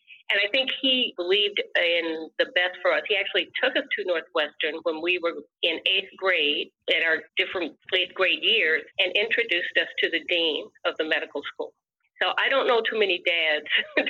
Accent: American